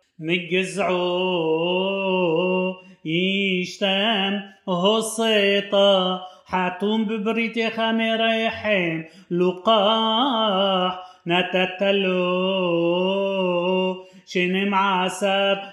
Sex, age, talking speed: male, 30-49, 40 wpm